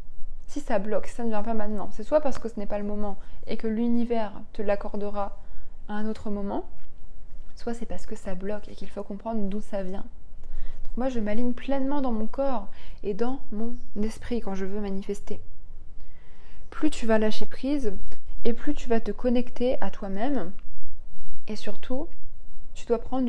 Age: 20-39